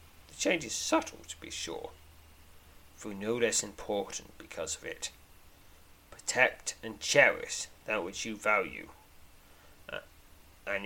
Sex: male